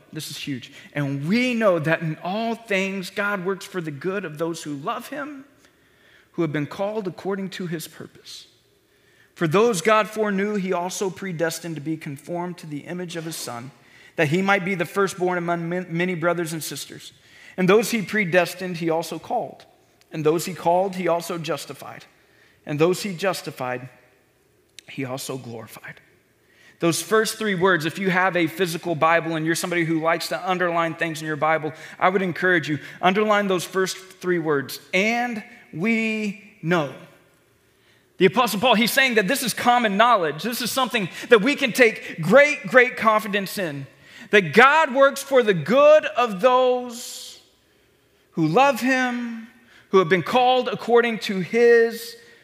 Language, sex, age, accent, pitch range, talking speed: English, male, 40-59, American, 165-220 Hz, 170 wpm